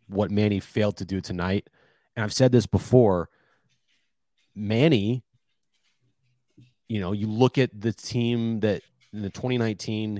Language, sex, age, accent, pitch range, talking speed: English, male, 30-49, American, 95-125 Hz, 135 wpm